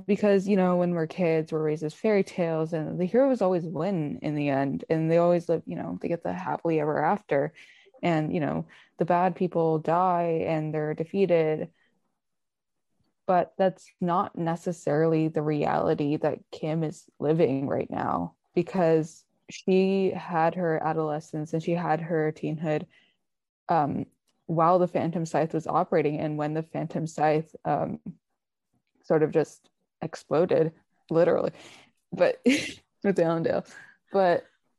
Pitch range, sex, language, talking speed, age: 155-180 Hz, female, English, 145 wpm, 20-39